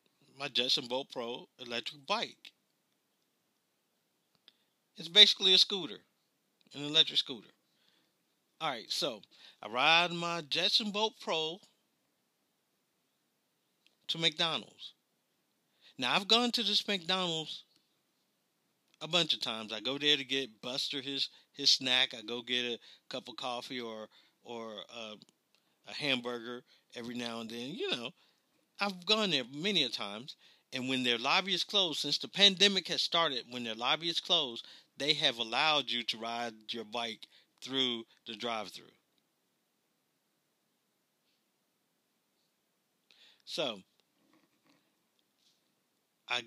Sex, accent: male, American